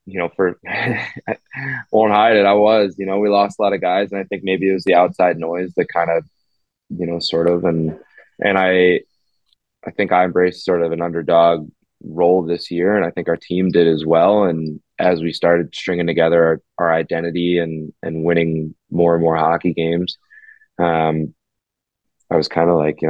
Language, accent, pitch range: English, American, 80-95 Hz